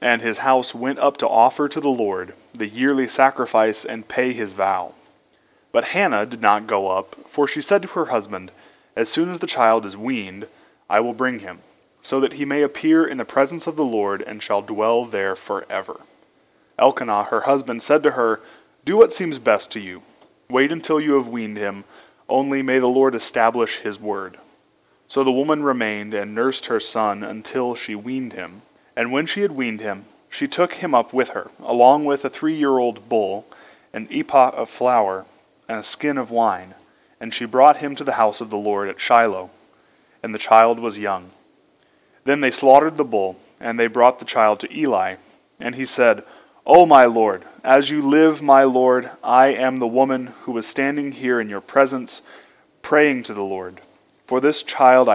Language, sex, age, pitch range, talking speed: English, male, 20-39, 110-140 Hz, 195 wpm